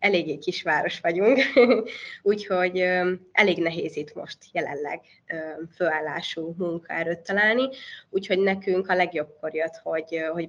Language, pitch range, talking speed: Hungarian, 170-215 Hz, 115 wpm